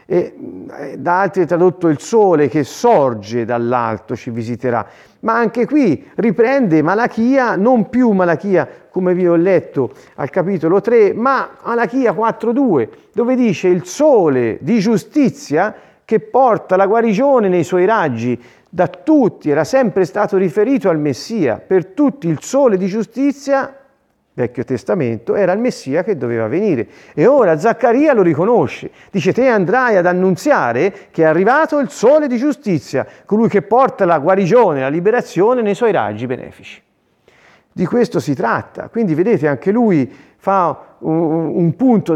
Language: Italian